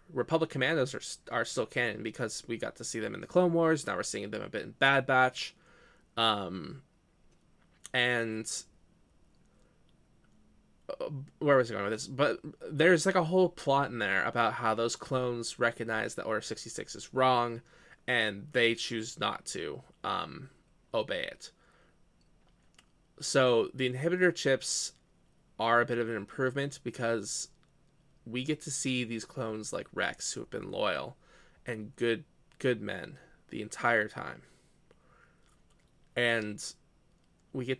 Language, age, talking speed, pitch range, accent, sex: English, 20-39, 145 wpm, 115-140 Hz, American, male